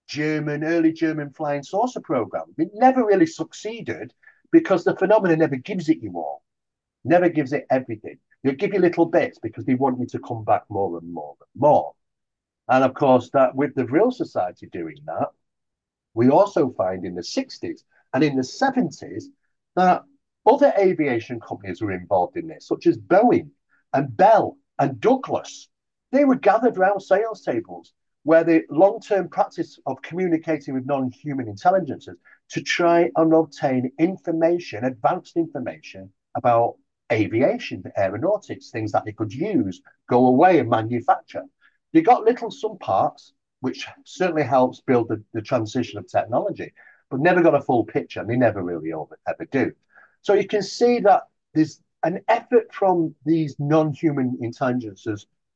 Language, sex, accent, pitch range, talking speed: English, male, British, 130-210 Hz, 160 wpm